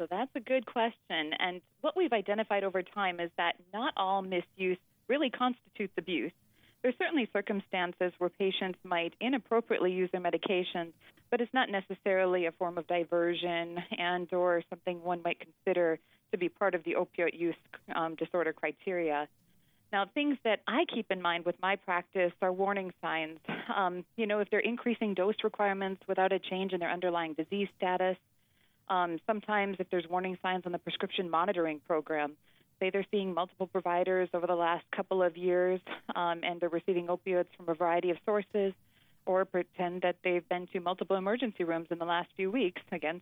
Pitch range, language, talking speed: 175-200 Hz, English, 180 wpm